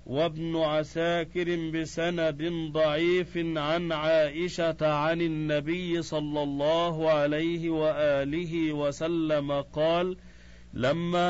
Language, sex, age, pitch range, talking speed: Arabic, male, 50-69, 150-170 Hz, 80 wpm